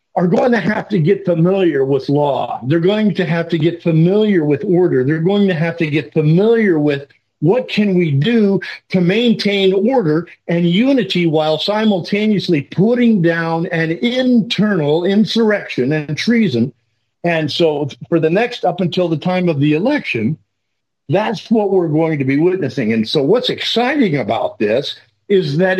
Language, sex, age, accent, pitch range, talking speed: English, male, 50-69, American, 145-200 Hz, 165 wpm